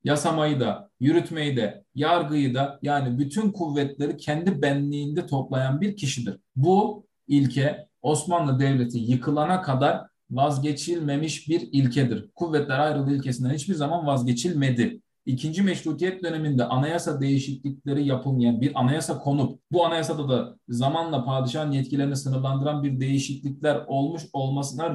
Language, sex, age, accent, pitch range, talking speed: Turkish, male, 40-59, native, 135-170 Hz, 120 wpm